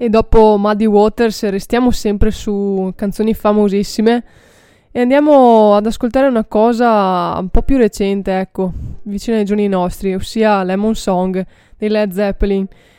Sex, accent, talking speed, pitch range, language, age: female, native, 140 wpm, 190-215 Hz, Italian, 20-39